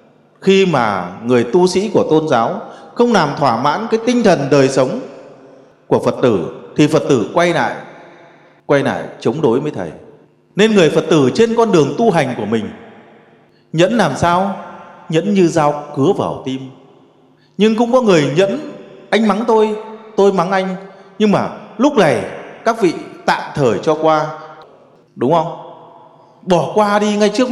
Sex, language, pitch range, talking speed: male, English, 155-215 Hz, 170 wpm